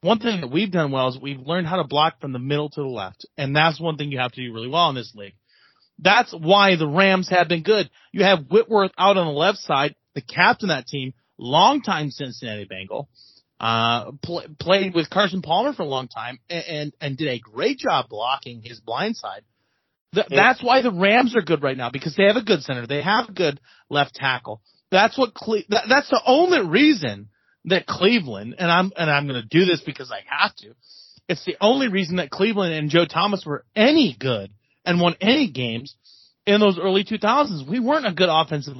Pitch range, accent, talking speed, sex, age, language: 140-200 Hz, American, 220 wpm, male, 30-49, English